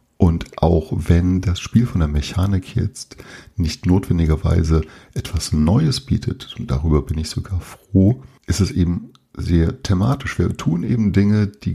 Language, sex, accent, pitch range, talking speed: German, male, German, 85-110 Hz, 155 wpm